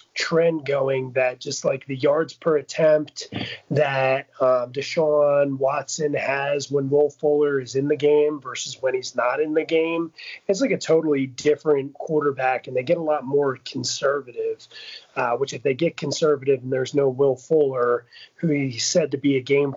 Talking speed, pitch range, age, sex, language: 180 wpm, 135-155 Hz, 30-49, male, English